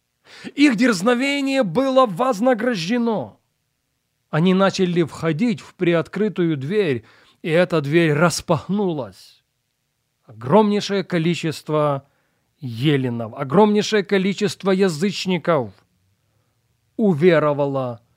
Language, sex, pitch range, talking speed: Russian, male, 130-200 Hz, 70 wpm